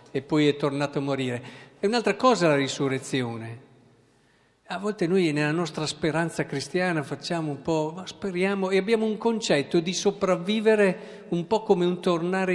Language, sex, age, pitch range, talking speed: Italian, male, 50-69, 150-210 Hz, 160 wpm